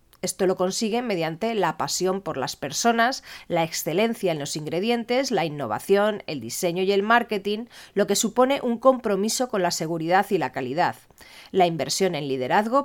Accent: Spanish